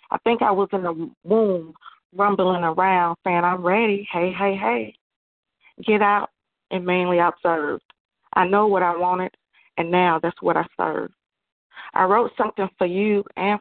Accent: American